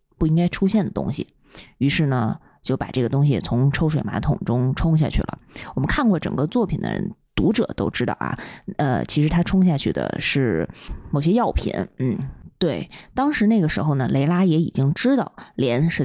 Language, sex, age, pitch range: Chinese, female, 20-39, 150-200 Hz